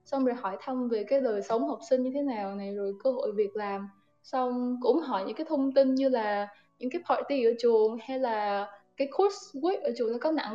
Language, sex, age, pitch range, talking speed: Vietnamese, female, 10-29, 225-290 Hz, 245 wpm